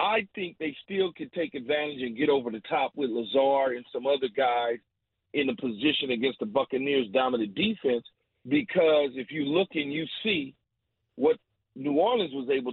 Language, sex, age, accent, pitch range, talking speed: English, male, 40-59, American, 130-190 Hz, 180 wpm